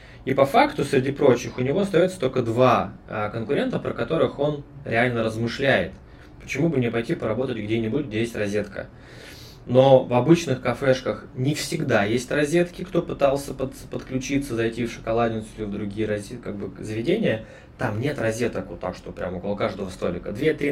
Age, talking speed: 20-39, 170 wpm